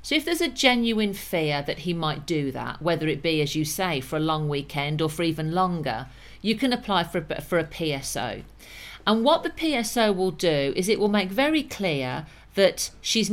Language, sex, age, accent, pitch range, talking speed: English, female, 50-69, British, 155-215 Hz, 210 wpm